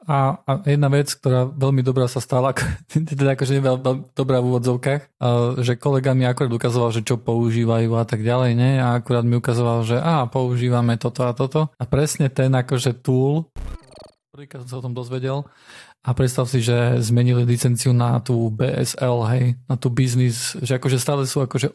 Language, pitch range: Polish, 125-140 Hz